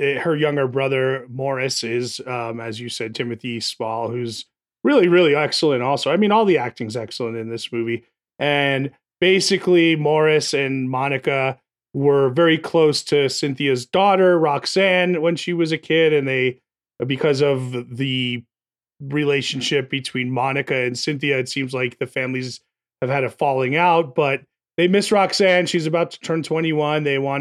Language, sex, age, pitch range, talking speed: English, male, 30-49, 125-155 Hz, 160 wpm